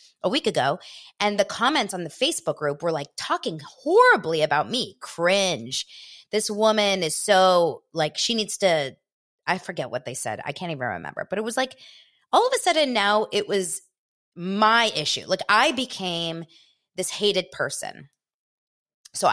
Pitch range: 150-210 Hz